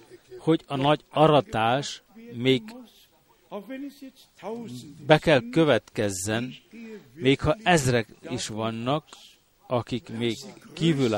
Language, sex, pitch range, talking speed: Hungarian, male, 125-170 Hz, 85 wpm